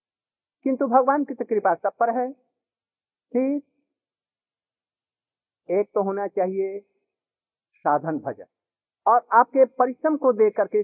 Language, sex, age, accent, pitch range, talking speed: Hindi, male, 50-69, native, 180-245 Hz, 115 wpm